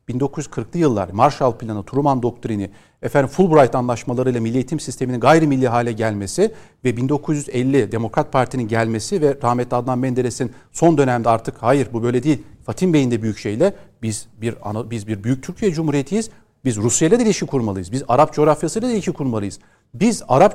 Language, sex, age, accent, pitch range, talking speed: Turkish, male, 40-59, native, 120-165 Hz, 170 wpm